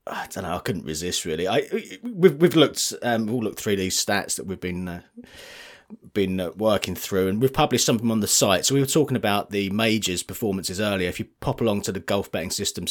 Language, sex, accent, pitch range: English, male, British, 85-105 Hz